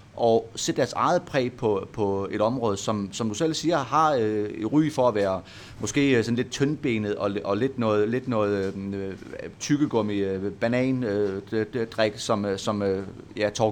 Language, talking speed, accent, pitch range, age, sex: Danish, 175 wpm, native, 105-130 Hz, 30-49, male